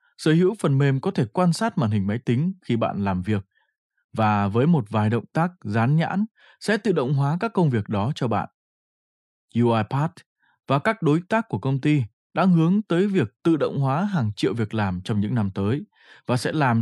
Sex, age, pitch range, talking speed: male, 20-39, 115-160 Hz, 215 wpm